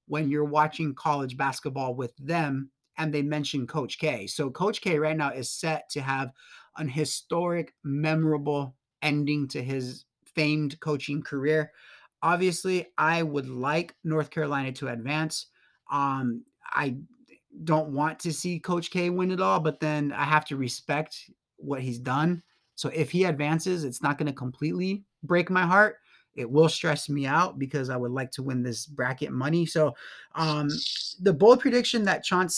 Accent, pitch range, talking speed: American, 140-170 Hz, 170 wpm